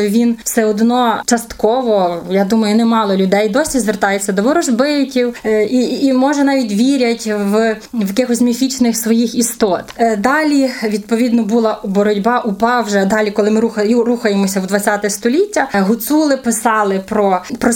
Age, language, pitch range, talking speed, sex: 20-39, Ukrainian, 215-255 Hz, 135 wpm, female